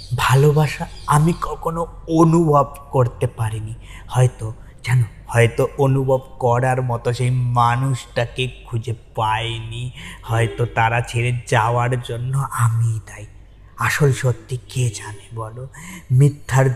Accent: native